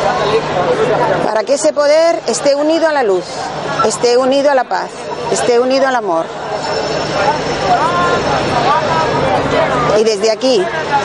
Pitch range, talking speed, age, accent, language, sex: 220-275 Hz, 115 wpm, 40-59, Spanish, Spanish, female